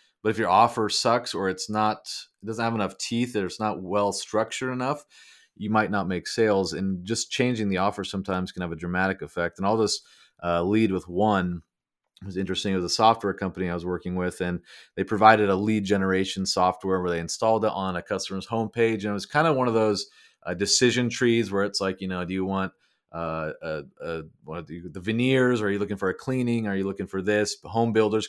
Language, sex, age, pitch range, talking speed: English, male, 30-49, 95-110 Hz, 230 wpm